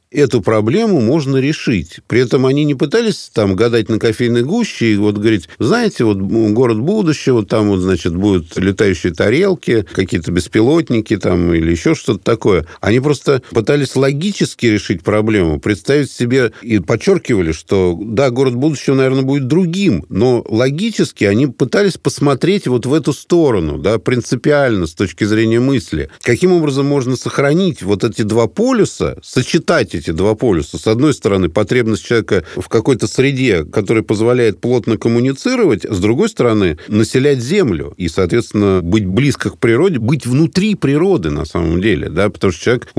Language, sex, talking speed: Russian, male, 160 wpm